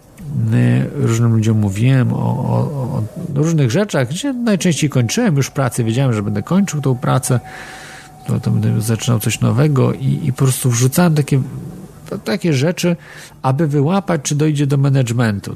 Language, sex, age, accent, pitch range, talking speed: Polish, male, 40-59, native, 125-175 Hz, 145 wpm